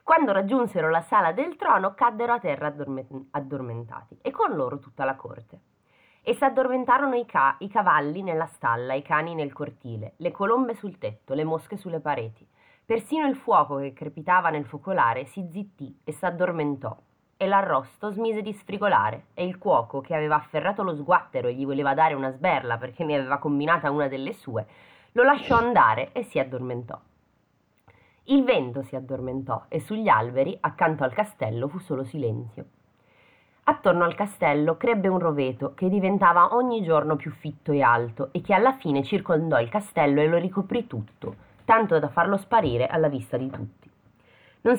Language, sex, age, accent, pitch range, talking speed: Italian, female, 20-39, native, 135-205 Hz, 170 wpm